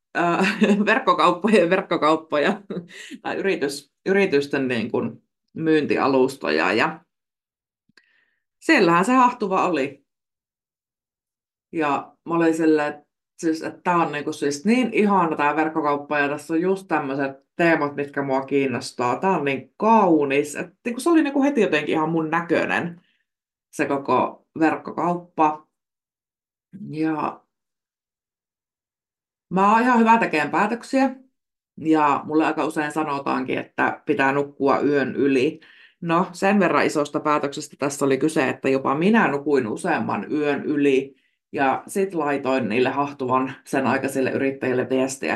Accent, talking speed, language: native, 125 wpm, Finnish